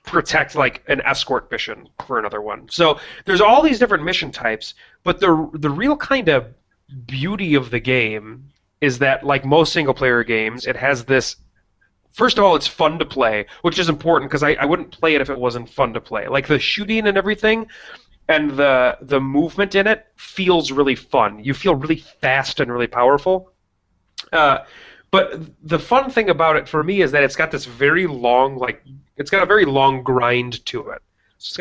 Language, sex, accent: English, male, American